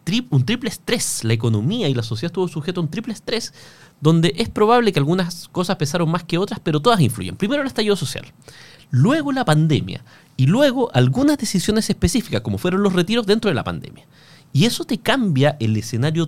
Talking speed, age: 200 wpm, 30-49